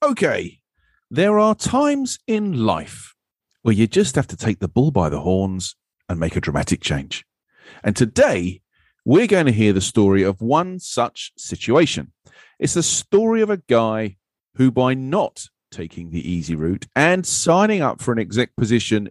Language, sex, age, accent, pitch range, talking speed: English, male, 40-59, British, 95-155 Hz, 170 wpm